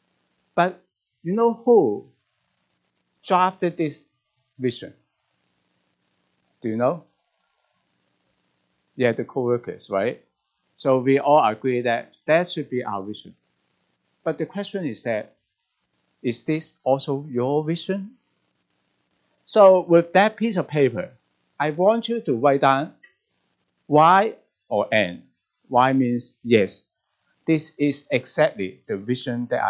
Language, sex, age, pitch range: Chinese, male, 50-69, 110-180 Hz